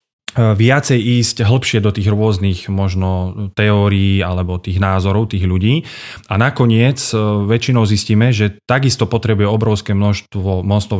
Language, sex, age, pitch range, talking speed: Slovak, male, 30-49, 100-115 Hz, 125 wpm